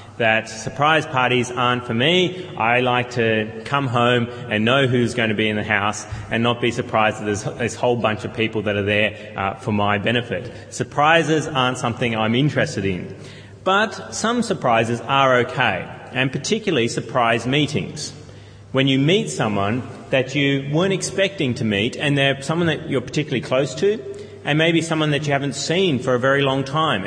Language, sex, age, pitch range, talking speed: English, male, 30-49, 115-145 Hz, 185 wpm